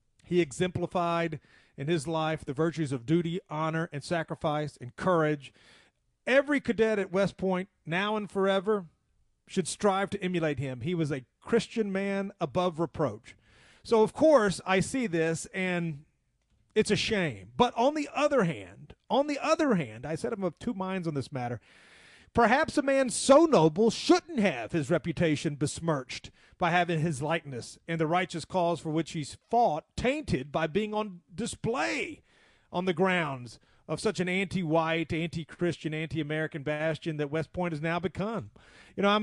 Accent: American